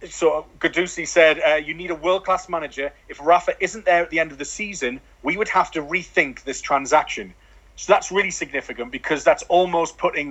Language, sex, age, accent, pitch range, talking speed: English, male, 30-49, British, 140-180 Hz, 200 wpm